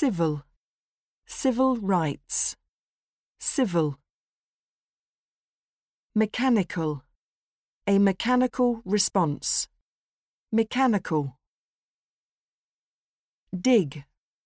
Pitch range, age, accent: 150-240 Hz, 50-69, British